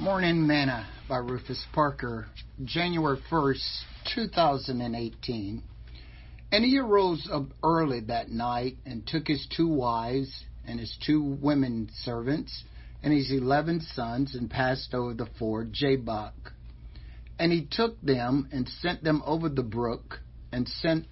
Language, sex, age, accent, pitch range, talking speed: English, male, 50-69, American, 105-145 Hz, 135 wpm